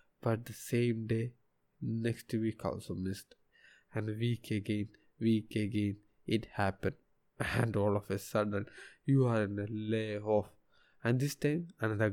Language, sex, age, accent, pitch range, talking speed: Malayalam, male, 20-39, native, 105-125 Hz, 150 wpm